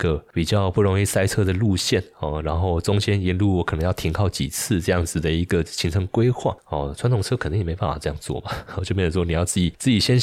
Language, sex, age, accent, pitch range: Chinese, male, 20-39, native, 80-100 Hz